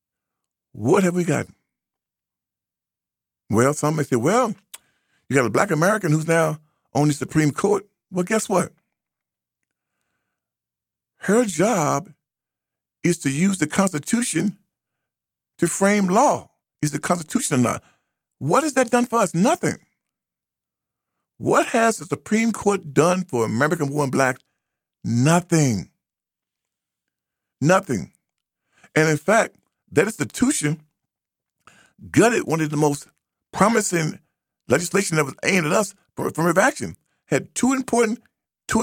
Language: English